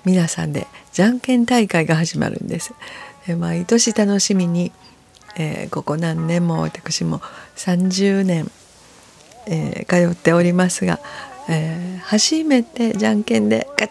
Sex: female